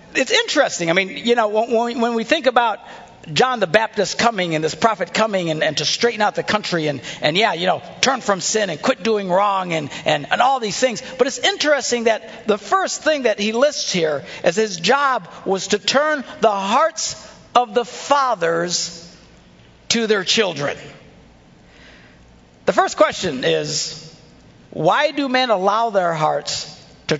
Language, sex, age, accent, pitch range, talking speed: English, male, 50-69, American, 145-220 Hz, 175 wpm